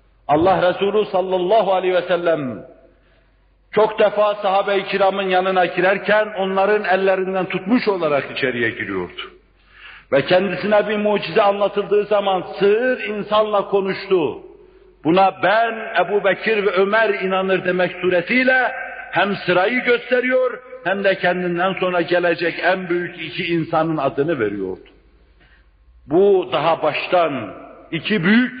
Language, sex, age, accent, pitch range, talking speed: Turkish, male, 60-79, native, 180-220 Hz, 115 wpm